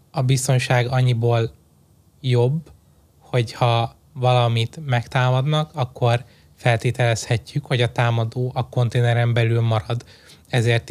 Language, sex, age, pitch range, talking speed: Hungarian, male, 20-39, 120-130 Hz, 95 wpm